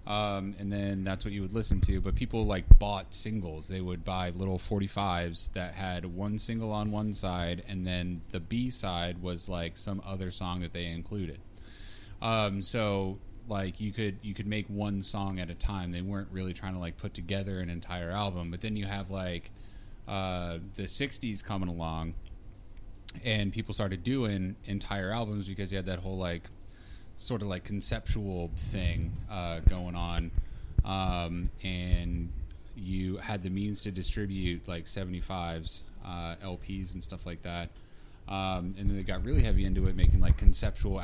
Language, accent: English, American